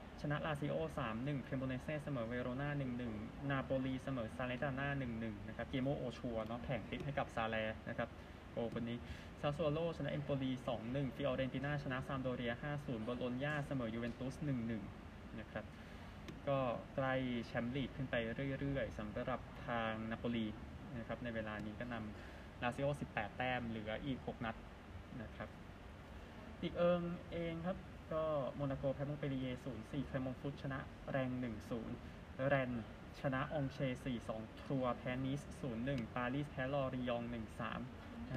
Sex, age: male, 20-39